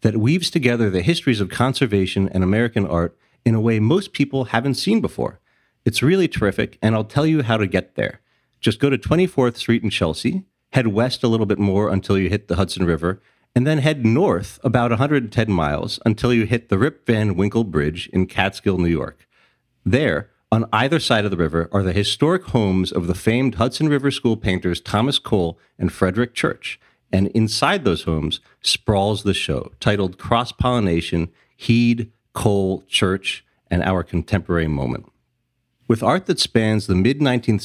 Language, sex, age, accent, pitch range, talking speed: English, male, 40-59, American, 95-130 Hz, 180 wpm